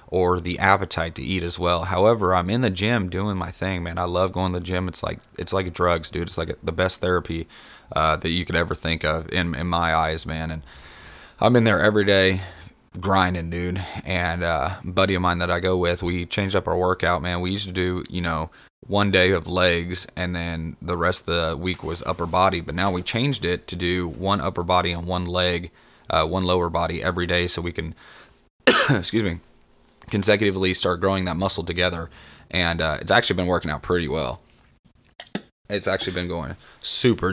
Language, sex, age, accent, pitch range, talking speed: English, male, 30-49, American, 85-95 Hz, 210 wpm